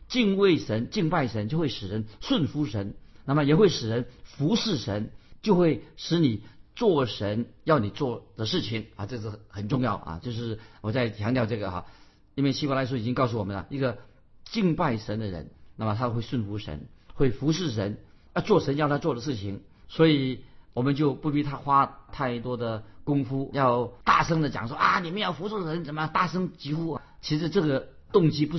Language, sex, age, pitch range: Chinese, male, 50-69, 110-155 Hz